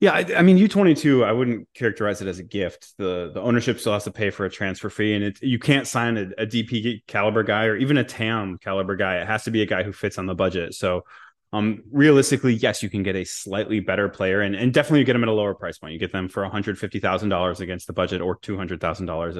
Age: 20-39